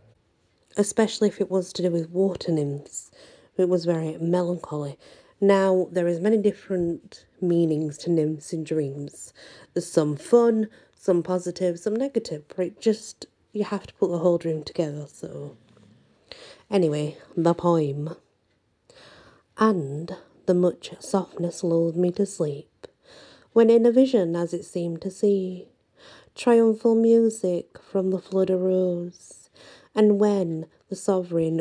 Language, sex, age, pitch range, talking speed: English, female, 40-59, 165-205 Hz, 135 wpm